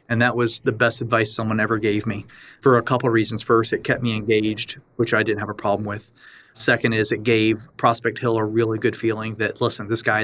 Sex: male